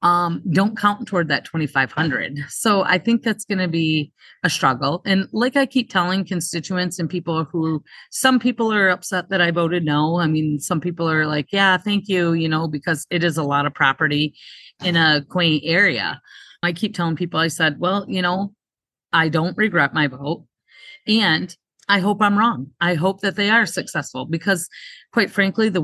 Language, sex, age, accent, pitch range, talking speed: English, female, 30-49, American, 155-190 Hz, 195 wpm